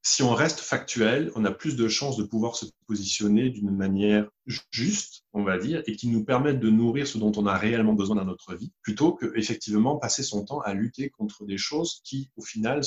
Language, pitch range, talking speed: French, 105-140 Hz, 225 wpm